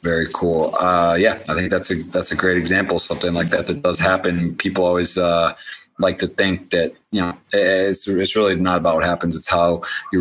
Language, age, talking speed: English, 30-49, 230 wpm